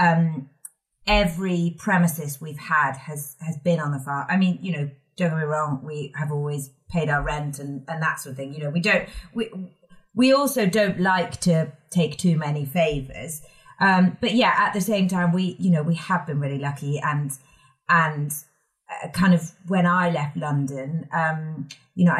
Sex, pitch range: female, 145-175 Hz